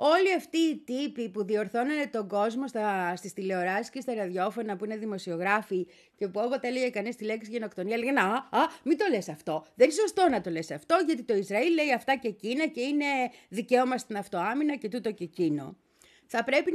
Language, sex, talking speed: Greek, female, 205 wpm